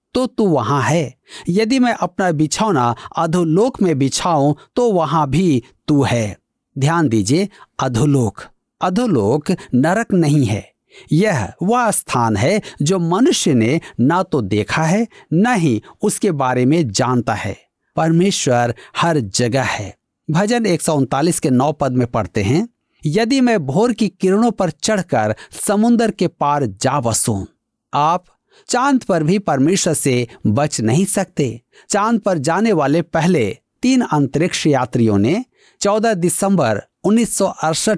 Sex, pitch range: male, 130-195 Hz